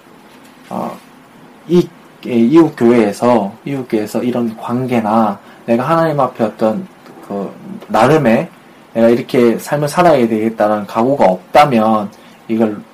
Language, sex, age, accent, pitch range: Korean, male, 20-39, native, 115-170 Hz